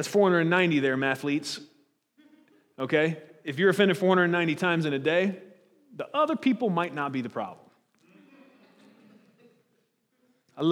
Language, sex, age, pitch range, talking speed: English, male, 30-49, 165-210 Hz, 125 wpm